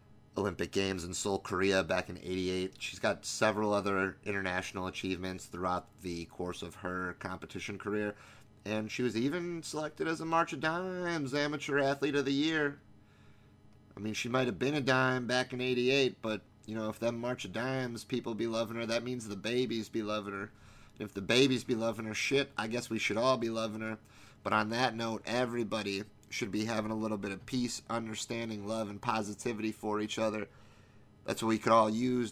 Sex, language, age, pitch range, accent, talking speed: male, English, 30-49, 105-120 Hz, American, 200 wpm